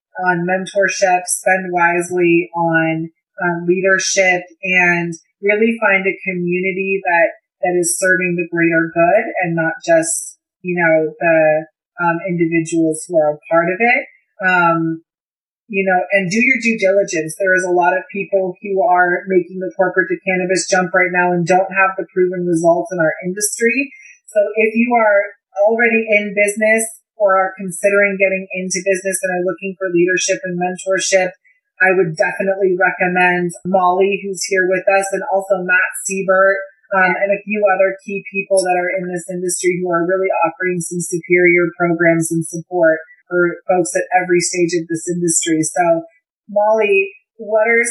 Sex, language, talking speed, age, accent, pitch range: female, English, 165 wpm, 30-49, American, 175-195 Hz